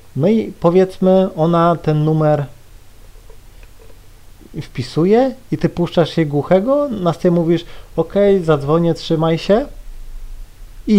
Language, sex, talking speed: Polish, male, 105 wpm